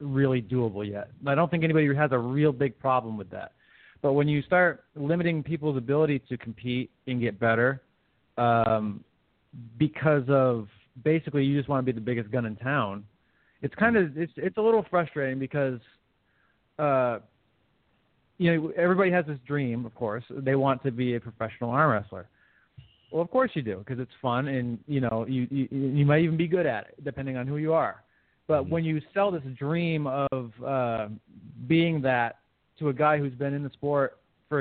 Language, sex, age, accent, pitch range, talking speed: English, male, 30-49, American, 125-155 Hz, 190 wpm